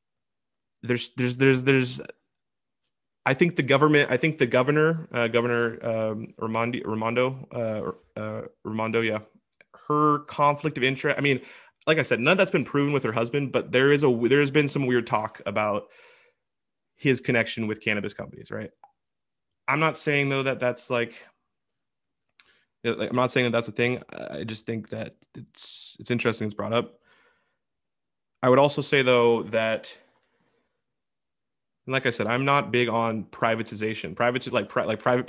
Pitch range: 110-135 Hz